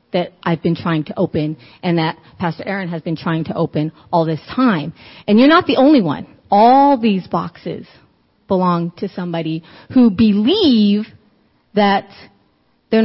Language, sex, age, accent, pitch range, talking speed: English, female, 30-49, American, 170-225 Hz, 155 wpm